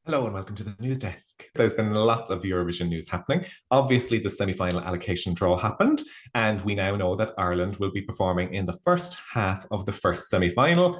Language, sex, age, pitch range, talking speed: English, male, 30-49, 95-125 Hz, 200 wpm